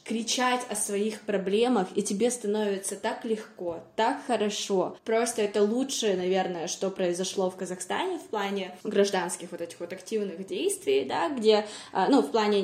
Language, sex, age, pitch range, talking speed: Russian, female, 20-39, 185-220 Hz, 150 wpm